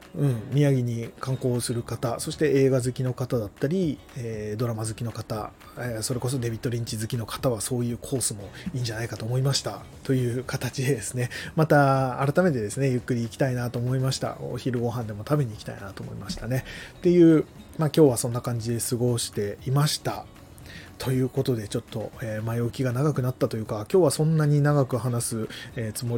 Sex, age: male, 20-39